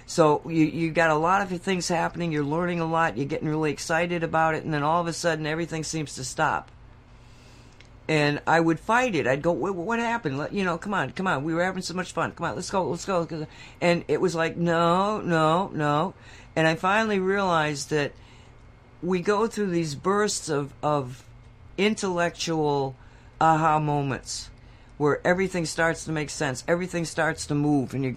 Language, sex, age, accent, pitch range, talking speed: English, female, 50-69, American, 125-175 Hz, 190 wpm